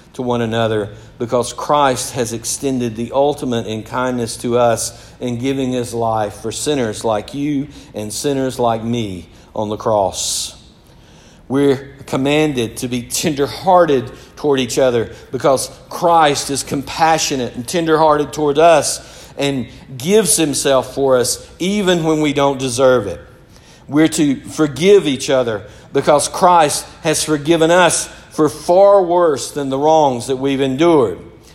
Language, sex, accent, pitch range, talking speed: English, male, American, 125-160 Hz, 140 wpm